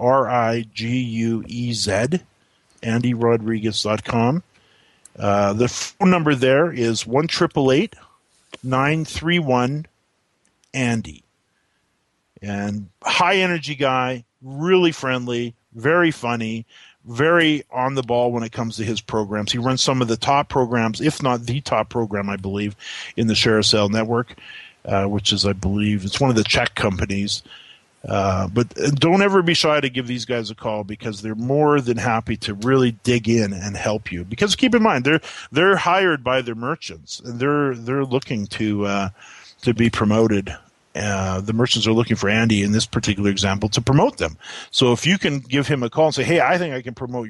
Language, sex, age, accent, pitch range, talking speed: English, male, 40-59, American, 105-135 Hz, 165 wpm